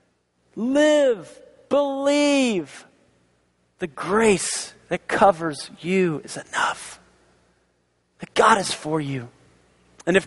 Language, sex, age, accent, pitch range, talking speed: English, male, 40-59, American, 170-240 Hz, 95 wpm